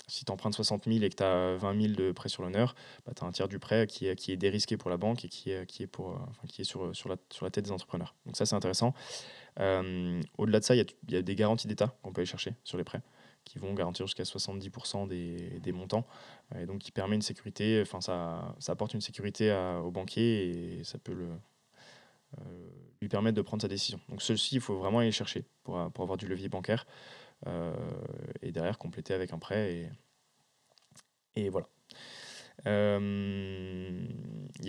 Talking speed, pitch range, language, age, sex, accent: 220 wpm, 95-110 Hz, French, 20-39, male, French